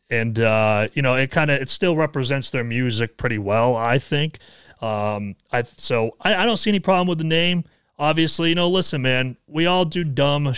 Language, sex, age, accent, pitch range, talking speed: English, male, 30-49, American, 115-150 Hz, 210 wpm